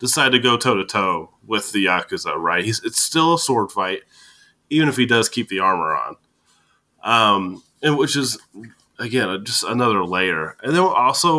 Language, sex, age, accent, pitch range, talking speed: English, male, 20-39, American, 100-150 Hz, 175 wpm